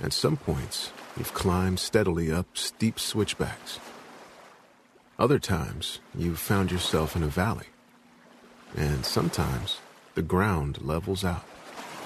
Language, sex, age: English, male, 50-69